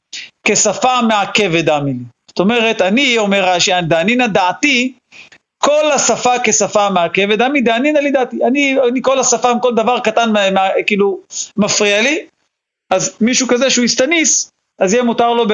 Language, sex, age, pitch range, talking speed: Hebrew, male, 40-59, 180-230 Hz, 160 wpm